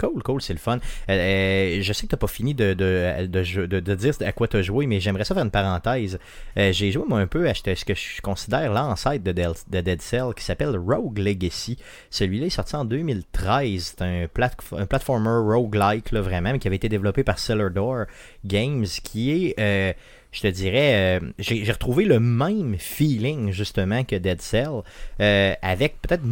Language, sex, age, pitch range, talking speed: French, male, 30-49, 95-125 Hz, 210 wpm